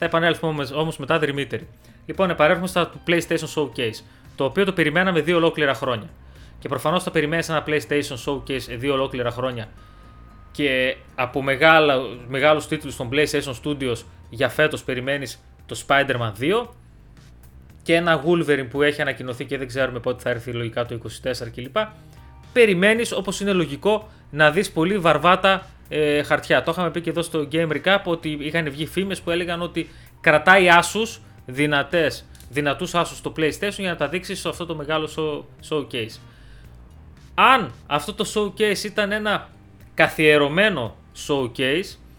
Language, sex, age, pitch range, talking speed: Greek, male, 30-49, 125-170 Hz, 150 wpm